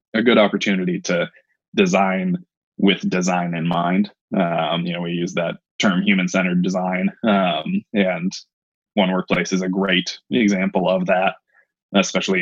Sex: male